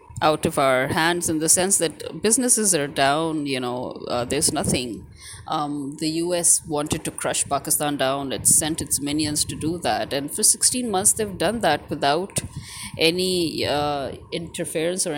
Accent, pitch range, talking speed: Indian, 140-165 Hz, 170 wpm